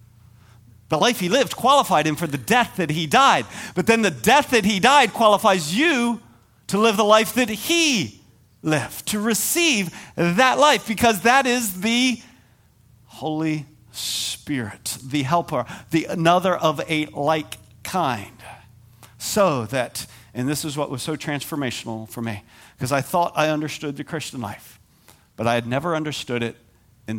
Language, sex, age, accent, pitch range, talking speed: English, male, 50-69, American, 110-155 Hz, 160 wpm